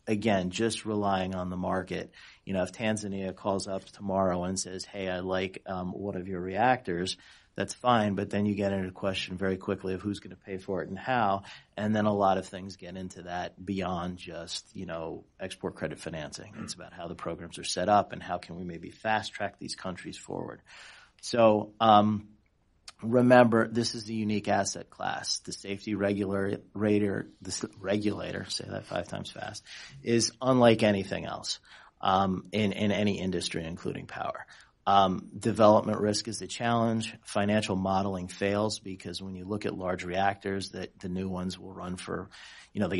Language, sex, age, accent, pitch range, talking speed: English, male, 40-59, American, 95-105 Hz, 180 wpm